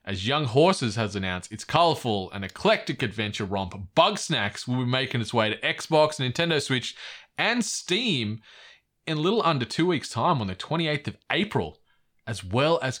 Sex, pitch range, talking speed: male, 105-140 Hz, 180 wpm